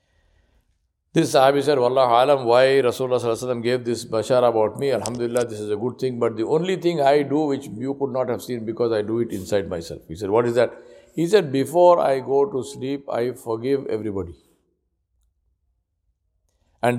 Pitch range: 95-140 Hz